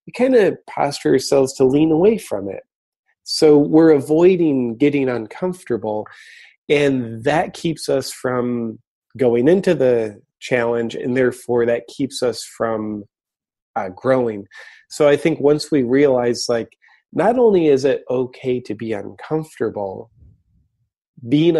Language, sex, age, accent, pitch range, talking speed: English, male, 30-49, American, 120-145 Hz, 135 wpm